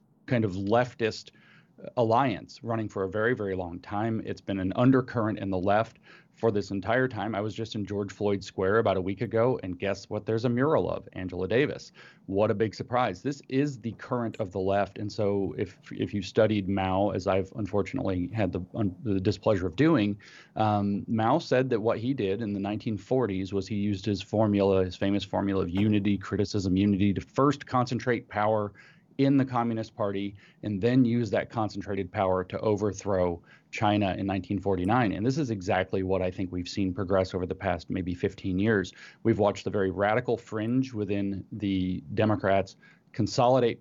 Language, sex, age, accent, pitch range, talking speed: English, male, 30-49, American, 95-110 Hz, 190 wpm